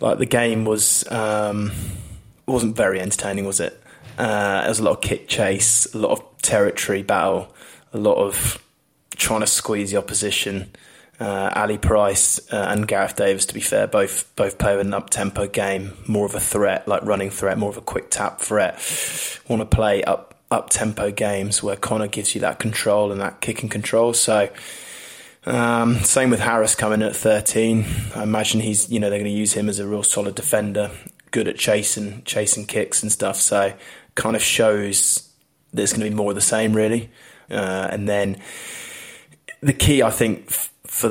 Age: 20-39